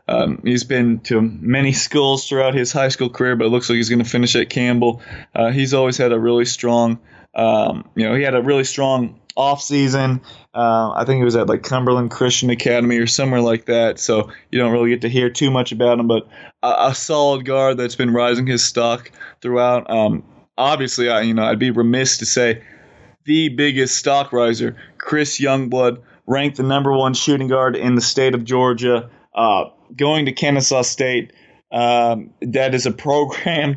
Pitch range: 120-135 Hz